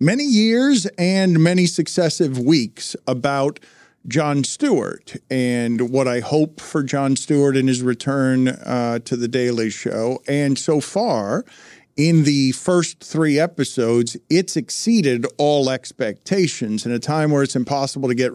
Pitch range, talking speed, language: 130-180 Hz, 145 wpm, English